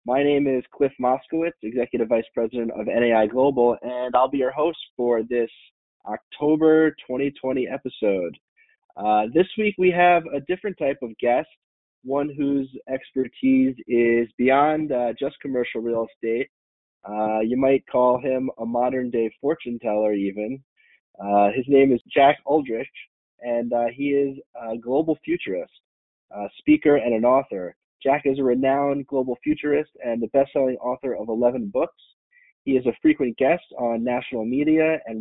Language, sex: English, male